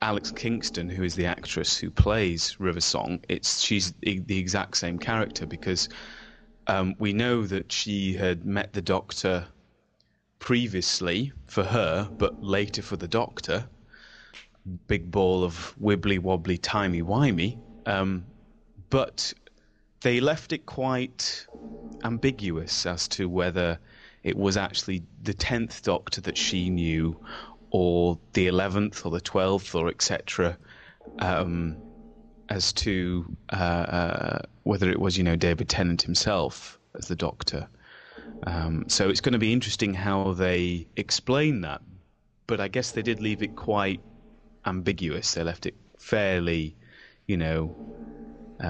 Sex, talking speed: male, 135 wpm